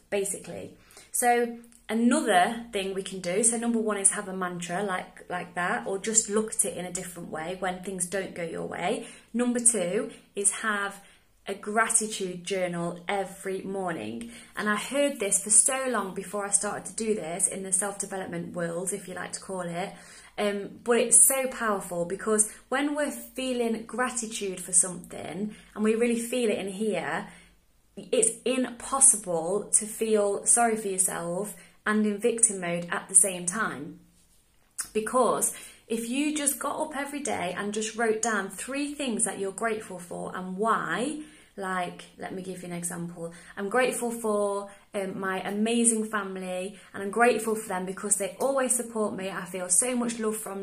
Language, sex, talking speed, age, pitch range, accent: English, female, 175 wpm, 20-39, 190-235 Hz, British